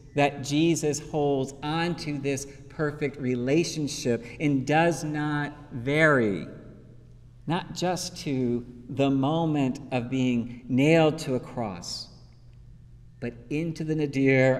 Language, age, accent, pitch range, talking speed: English, 50-69, American, 125-155 Hz, 105 wpm